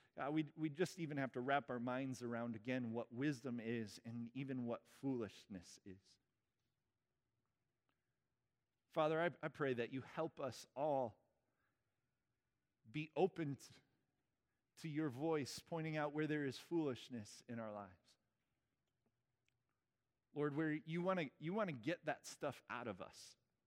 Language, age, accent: English, 40-59, American